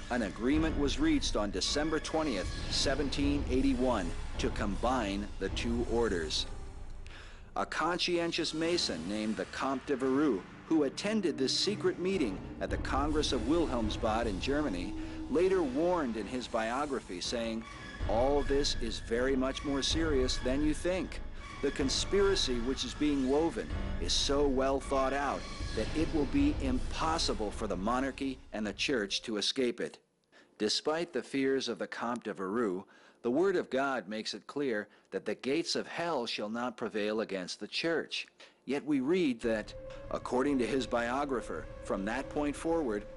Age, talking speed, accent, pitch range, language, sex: 50-69, 155 wpm, American, 110-155 Hz, English, male